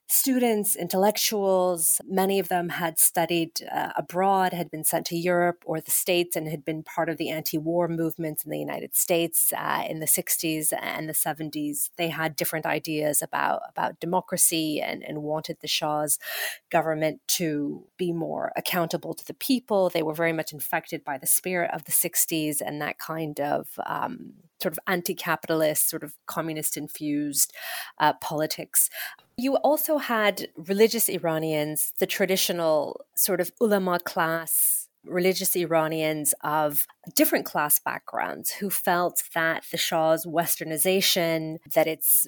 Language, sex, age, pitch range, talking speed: English, female, 30-49, 155-180 Hz, 150 wpm